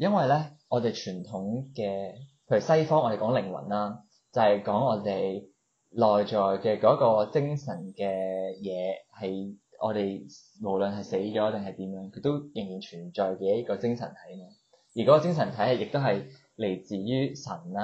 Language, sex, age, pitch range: Chinese, male, 20-39, 95-130 Hz